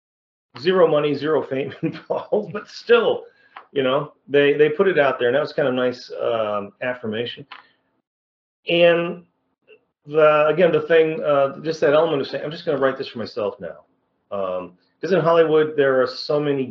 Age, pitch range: 40-59, 120-165 Hz